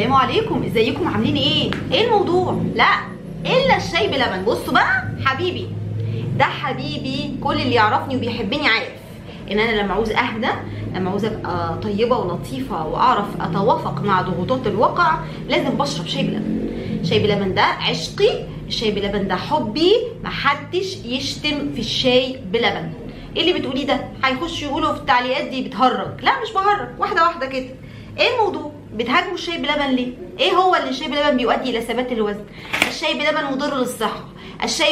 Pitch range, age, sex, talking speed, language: 215-305 Hz, 20-39, female, 155 wpm, Arabic